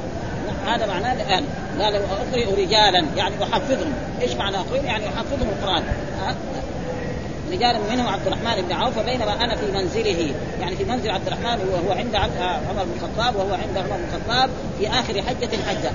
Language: Arabic